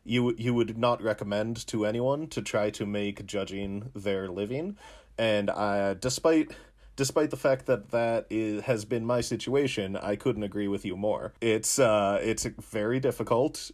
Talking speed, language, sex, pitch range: 165 wpm, English, male, 100-115 Hz